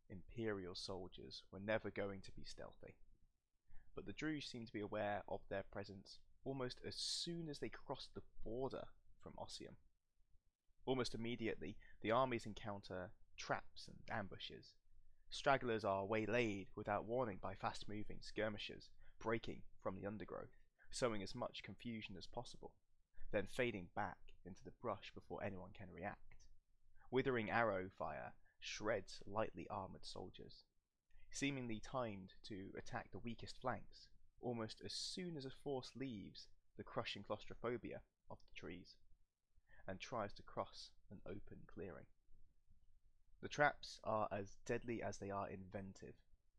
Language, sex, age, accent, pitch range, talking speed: English, male, 20-39, British, 95-115 Hz, 140 wpm